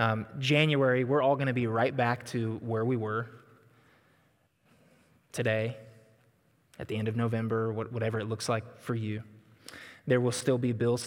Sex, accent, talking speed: male, American, 165 wpm